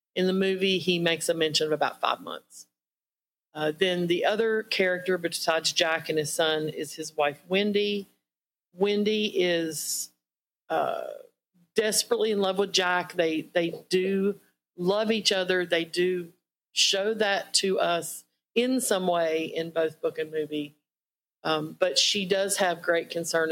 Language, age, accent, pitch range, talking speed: English, 50-69, American, 160-195 Hz, 155 wpm